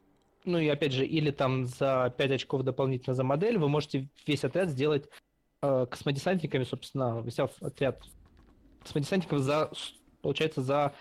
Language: Russian